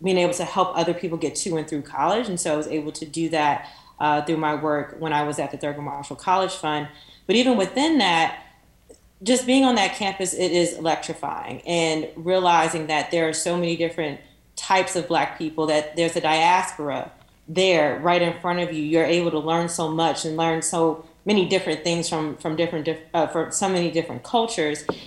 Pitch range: 160-185 Hz